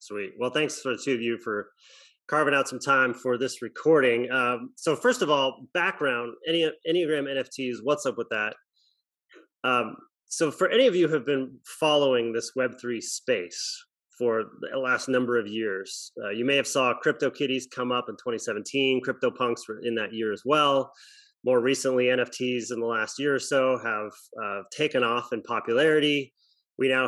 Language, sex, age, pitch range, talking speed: English, male, 30-49, 120-145 Hz, 180 wpm